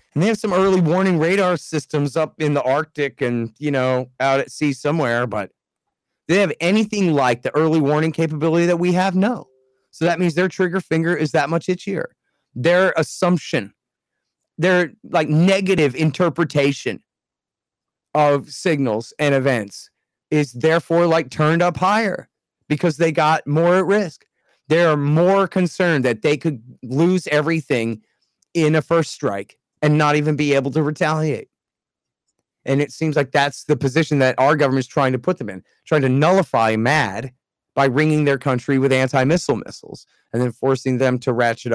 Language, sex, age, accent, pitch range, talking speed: English, male, 30-49, American, 130-165 Hz, 170 wpm